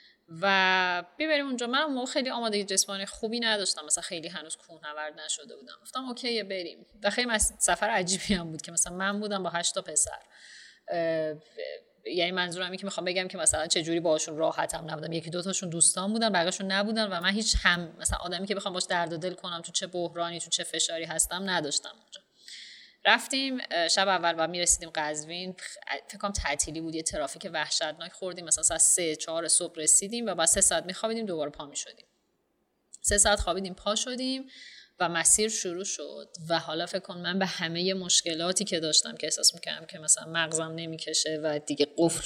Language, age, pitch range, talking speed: Persian, 30-49, 165-215 Hz, 185 wpm